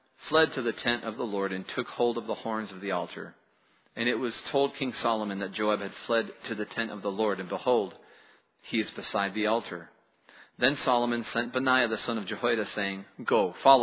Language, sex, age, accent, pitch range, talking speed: English, male, 40-59, American, 100-120 Hz, 215 wpm